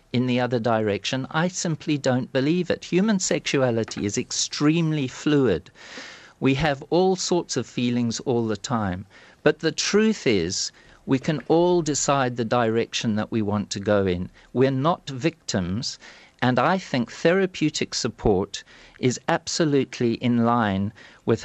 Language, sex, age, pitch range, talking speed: English, male, 50-69, 115-150 Hz, 145 wpm